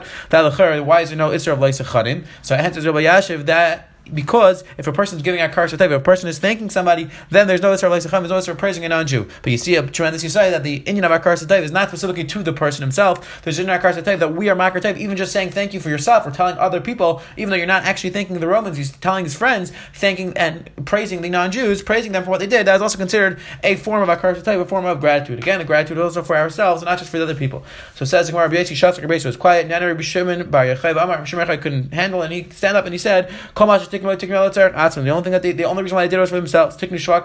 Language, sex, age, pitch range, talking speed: English, male, 30-49, 160-185 Hz, 245 wpm